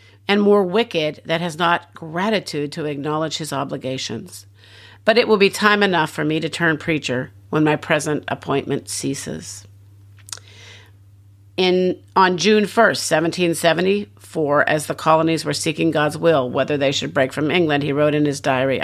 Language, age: English, 50-69